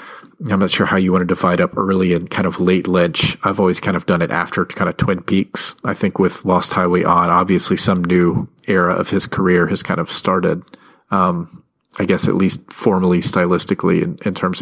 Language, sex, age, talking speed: English, male, 30-49, 220 wpm